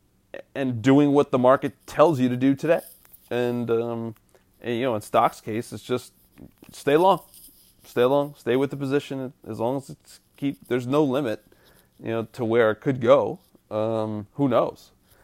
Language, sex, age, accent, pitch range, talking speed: English, male, 30-49, American, 110-130 Hz, 180 wpm